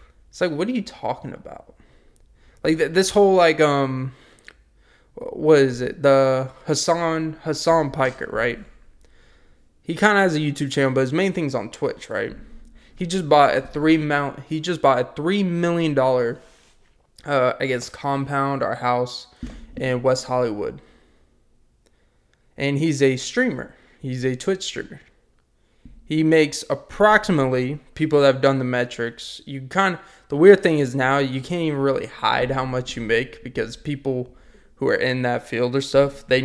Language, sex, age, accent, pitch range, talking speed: English, male, 20-39, American, 125-155 Hz, 165 wpm